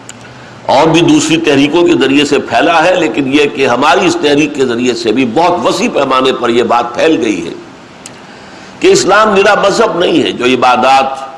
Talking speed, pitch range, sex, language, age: 190 wpm, 130-180 Hz, male, Urdu, 60-79